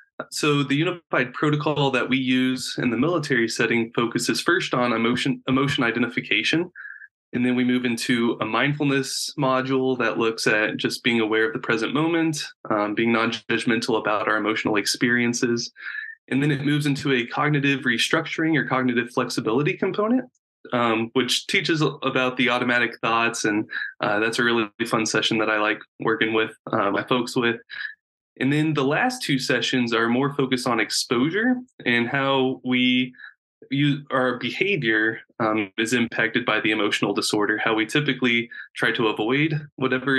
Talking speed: 160 wpm